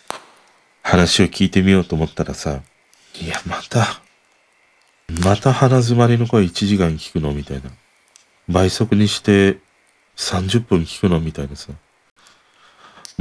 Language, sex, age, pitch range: Japanese, male, 40-59, 75-105 Hz